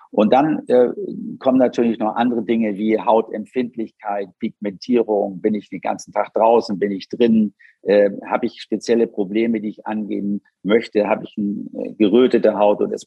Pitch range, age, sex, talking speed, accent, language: 105-120 Hz, 50-69, male, 165 wpm, German, German